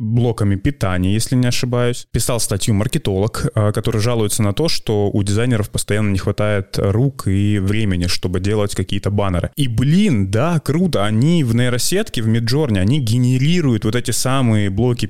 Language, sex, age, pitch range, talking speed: Russian, male, 20-39, 100-130 Hz, 160 wpm